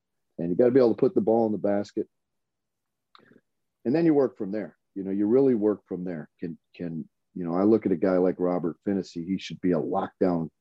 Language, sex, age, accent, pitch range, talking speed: English, male, 40-59, American, 90-105 Hz, 245 wpm